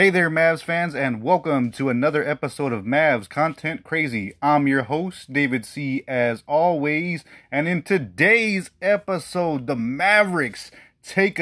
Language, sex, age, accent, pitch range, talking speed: English, male, 30-49, American, 130-170 Hz, 140 wpm